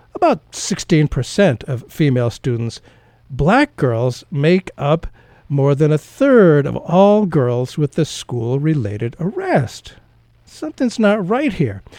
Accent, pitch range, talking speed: American, 120-175 Hz, 120 wpm